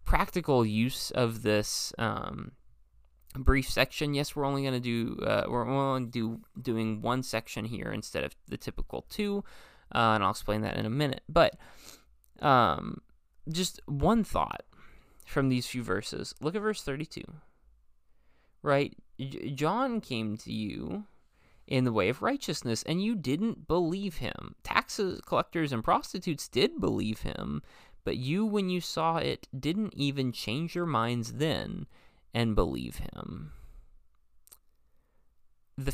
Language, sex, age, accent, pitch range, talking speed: English, male, 20-39, American, 110-155 Hz, 140 wpm